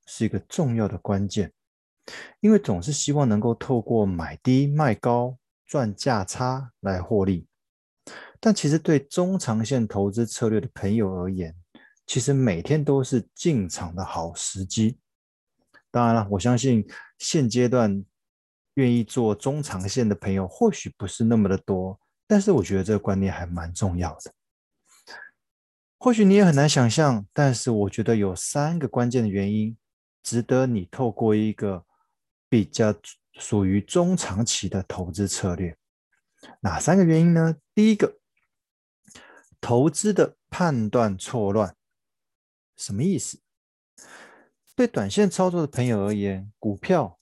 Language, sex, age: Chinese, male, 20-39